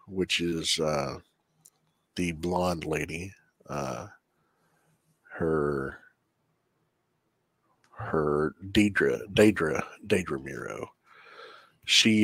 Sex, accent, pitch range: male, American, 85-110 Hz